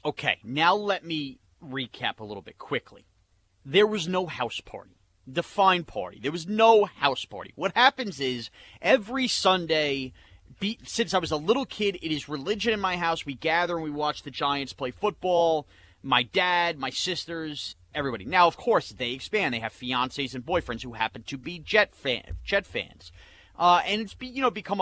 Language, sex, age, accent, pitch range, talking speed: English, male, 30-49, American, 130-195 Hz, 190 wpm